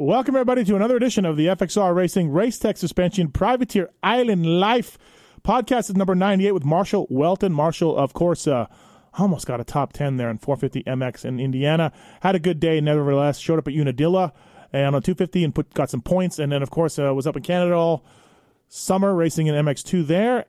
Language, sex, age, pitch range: English, male, 30-49, 140-185 Hz